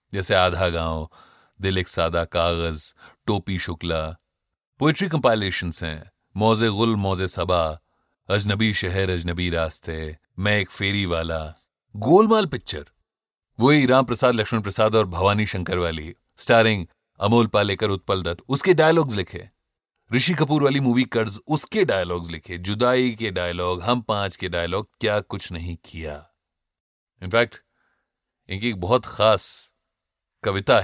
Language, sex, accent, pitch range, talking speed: Hindi, male, native, 85-110 Hz, 130 wpm